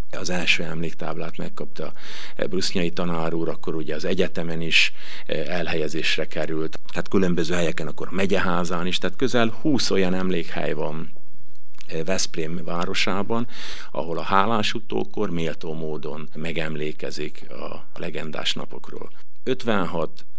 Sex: male